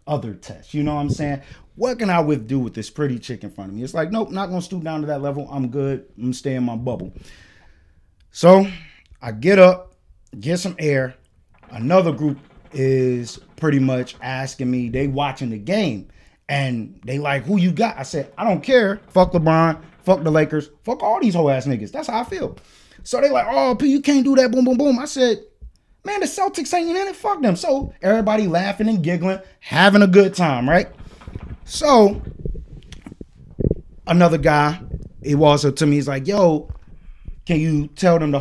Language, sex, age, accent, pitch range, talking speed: English, male, 30-49, American, 130-210 Hz, 200 wpm